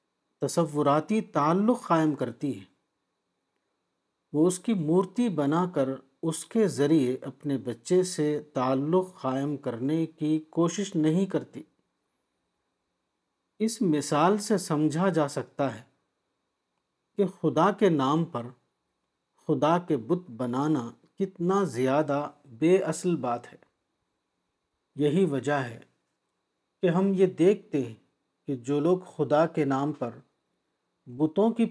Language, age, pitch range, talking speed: Urdu, 50-69, 140-185 Hz, 120 wpm